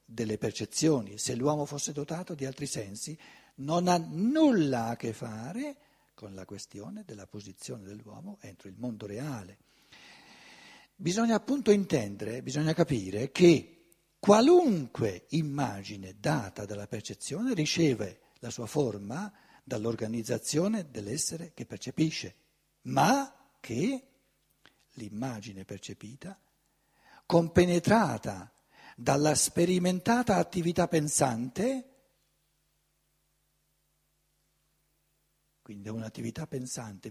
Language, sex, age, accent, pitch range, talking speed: Italian, male, 60-79, native, 115-180 Hz, 90 wpm